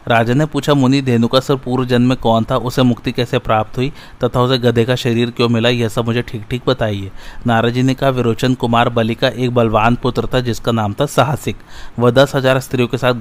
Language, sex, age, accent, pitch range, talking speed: Hindi, male, 30-49, native, 115-130 Hz, 225 wpm